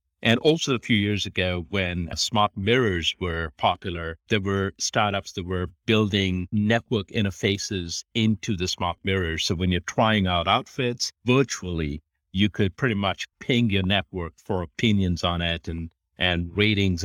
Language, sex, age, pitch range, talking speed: English, male, 50-69, 90-110 Hz, 160 wpm